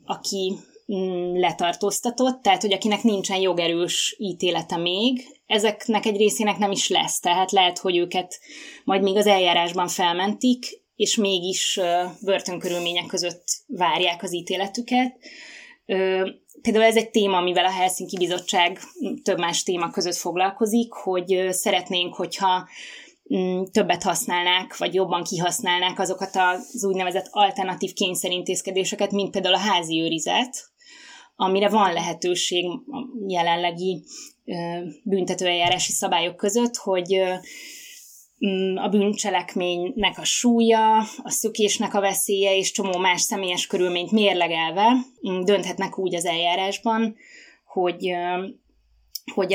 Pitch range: 180-215 Hz